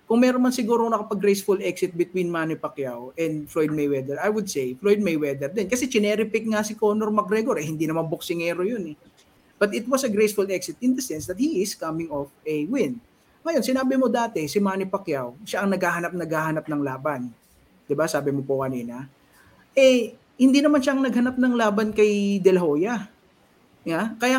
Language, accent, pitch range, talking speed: Filipino, native, 150-230 Hz, 195 wpm